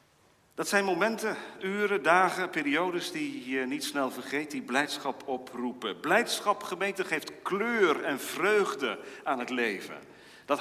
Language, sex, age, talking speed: Dutch, male, 40-59, 135 wpm